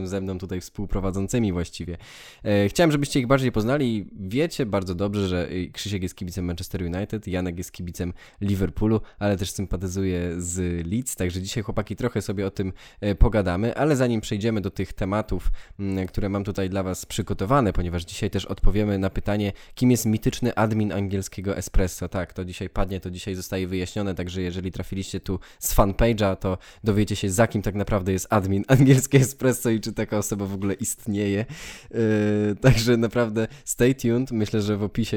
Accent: native